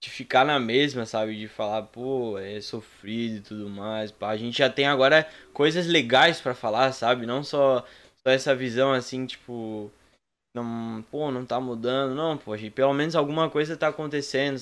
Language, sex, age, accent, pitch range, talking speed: Portuguese, male, 10-29, Brazilian, 120-145 Hz, 190 wpm